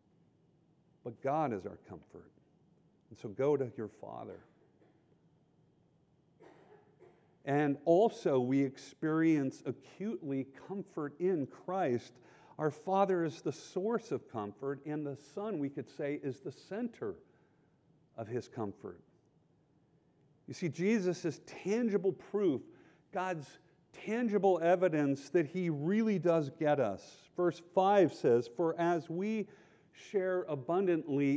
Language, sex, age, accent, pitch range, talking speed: English, male, 50-69, American, 140-180 Hz, 115 wpm